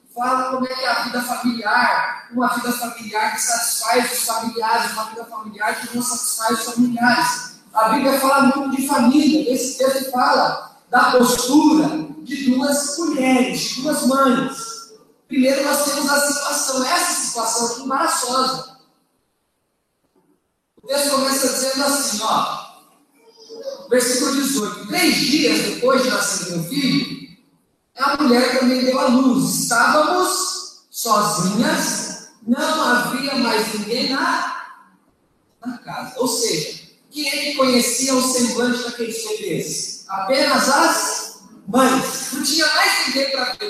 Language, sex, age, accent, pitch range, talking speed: Portuguese, male, 20-39, Brazilian, 235-280 Hz, 135 wpm